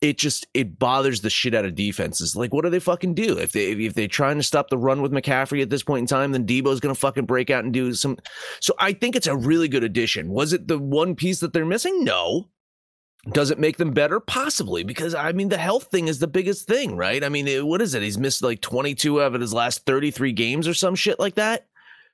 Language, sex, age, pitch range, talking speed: English, male, 30-49, 110-150 Hz, 260 wpm